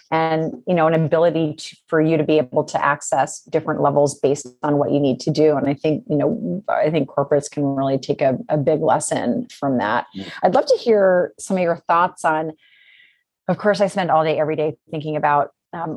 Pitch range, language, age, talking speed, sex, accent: 155-175 Hz, English, 30-49, 220 wpm, female, American